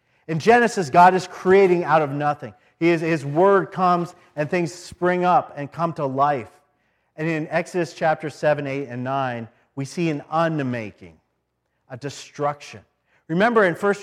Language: English